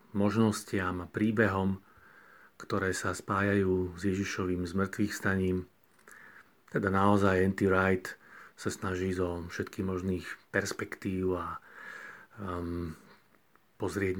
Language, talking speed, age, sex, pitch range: Slovak, 95 wpm, 40-59, male, 95-110 Hz